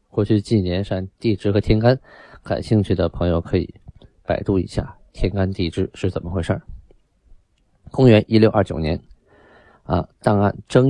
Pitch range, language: 85-105 Hz, Chinese